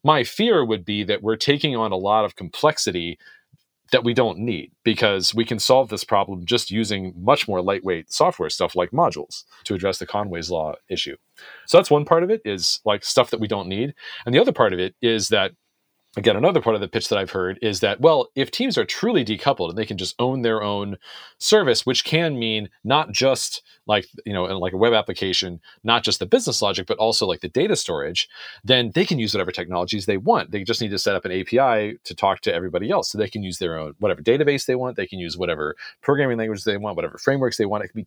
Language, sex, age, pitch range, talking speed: English, male, 40-59, 95-125 Hz, 240 wpm